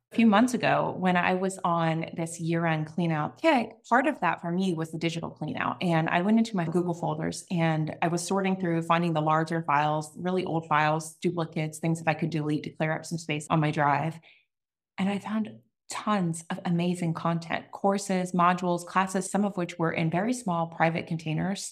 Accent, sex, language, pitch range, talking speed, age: American, female, English, 160-195 Hz, 205 wpm, 20-39